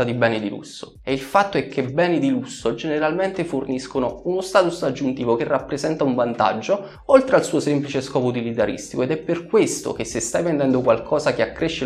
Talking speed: 190 wpm